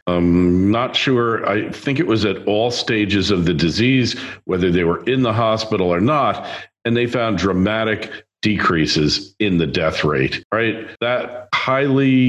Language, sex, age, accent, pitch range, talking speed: English, male, 50-69, American, 95-120 Hz, 160 wpm